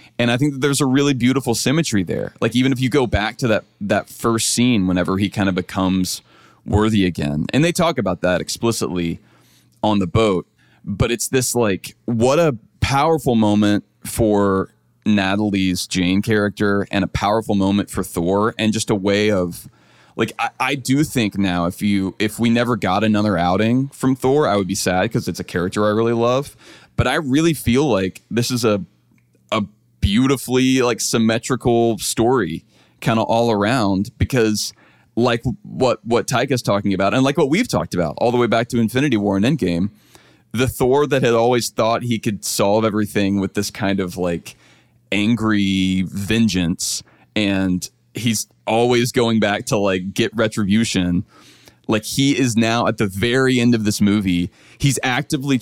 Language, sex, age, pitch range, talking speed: English, male, 20-39, 95-120 Hz, 180 wpm